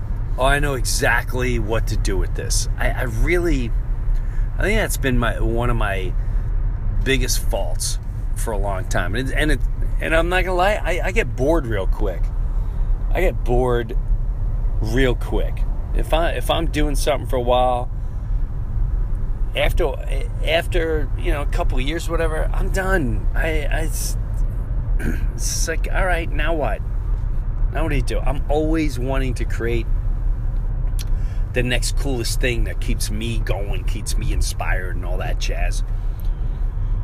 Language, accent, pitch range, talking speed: English, American, 105-125 Hz, 160 wpm